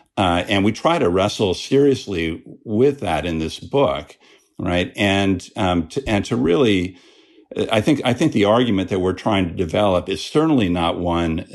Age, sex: 50-69, male